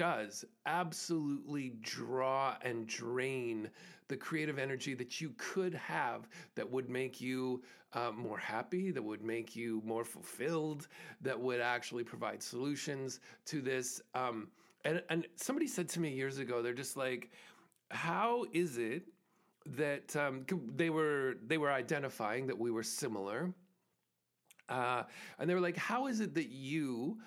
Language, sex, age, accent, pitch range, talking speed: English, male, 40-59, American, 120-160 Hz, 150 wpm